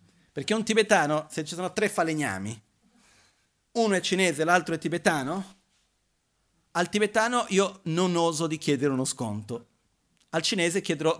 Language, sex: Italian, male